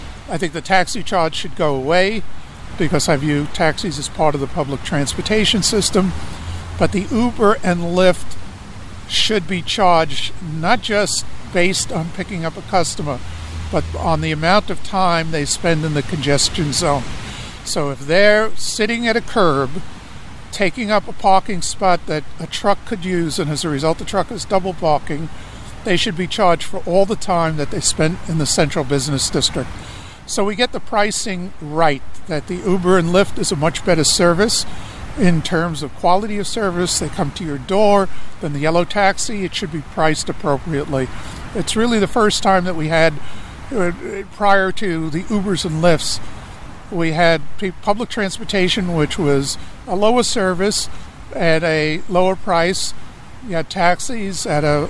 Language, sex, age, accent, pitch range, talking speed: English, male, 60-79, American, 150-195 Hz, 170 wpm